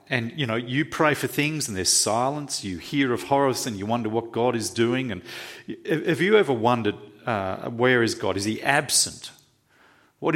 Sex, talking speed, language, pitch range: male, 195 wpm, English, 115-165 Hz